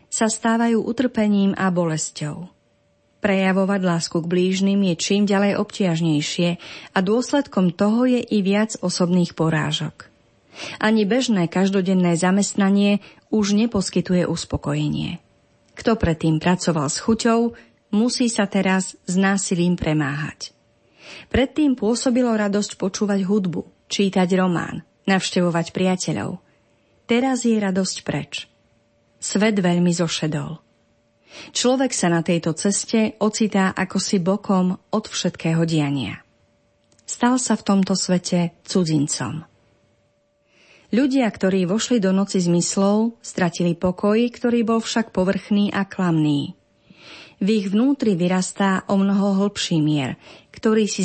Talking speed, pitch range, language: 115 wpm, 170-210 Hz, Slovak